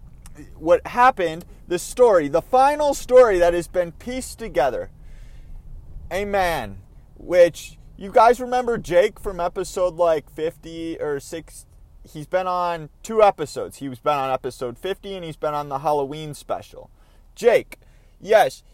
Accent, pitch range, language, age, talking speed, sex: American, 145-240 Hz, English, 30-49, 145 wpm, male